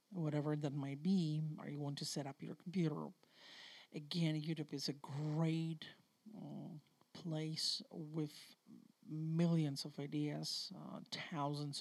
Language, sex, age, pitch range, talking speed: English, male, 50-69, 150-190 Hz, 125 wpm